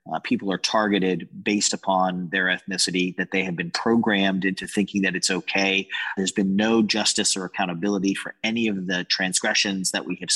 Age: 30-49